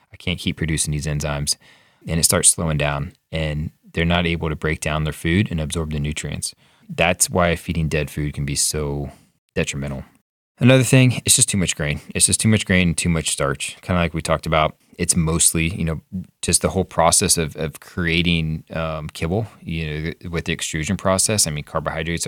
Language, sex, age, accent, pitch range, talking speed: English, male, 20-39, American, 75-90 Hz, 205 wpm